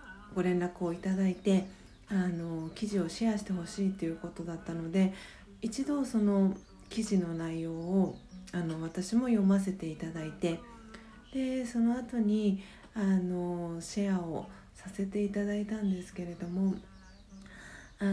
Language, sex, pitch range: Japanese, female, 185-225 Hz